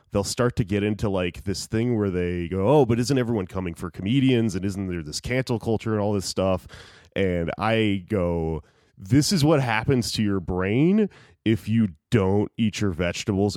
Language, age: English, 30-49